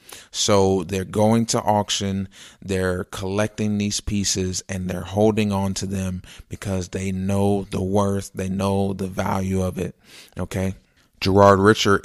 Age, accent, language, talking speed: 30-49, American, English, 145 wpm